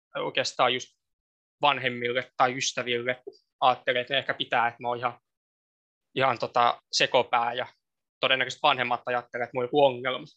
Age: 20-39